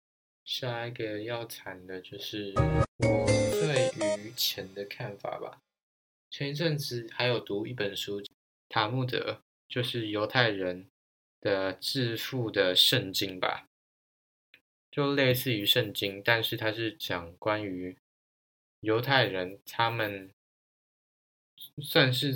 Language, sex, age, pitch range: Chinese, male, 20-39, 100-125 Hz